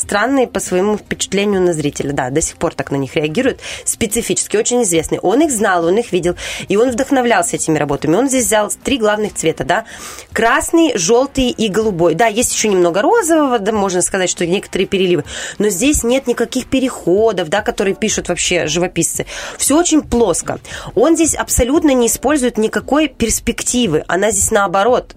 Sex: female